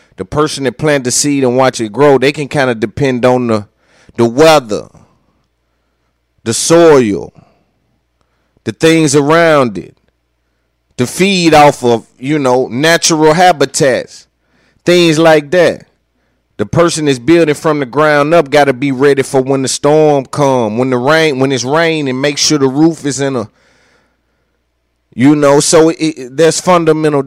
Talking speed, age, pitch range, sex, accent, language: 160 wpm, 30-49, 110-155 Hz, male, American, English